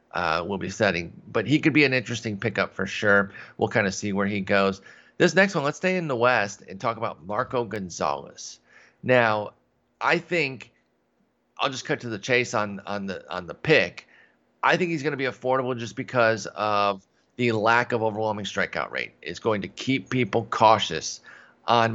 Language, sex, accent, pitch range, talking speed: English, male, American, 100-125 Hz, 190 wpm